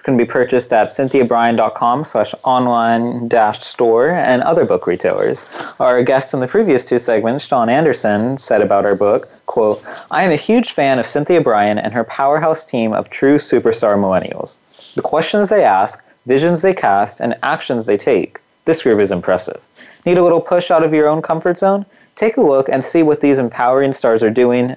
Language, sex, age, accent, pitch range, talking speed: English, male, 20-39, American, 120-180 Hz, 190 wpm